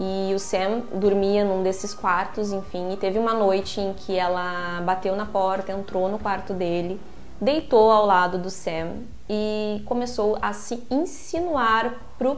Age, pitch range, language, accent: 20-39, 185-220 Hz, Portuguese, Brazilian